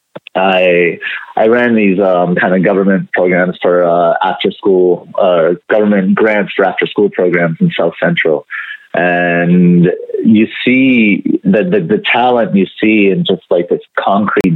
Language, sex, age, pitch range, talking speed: English, male, 30-49, 90-130 Hz, 155 wpm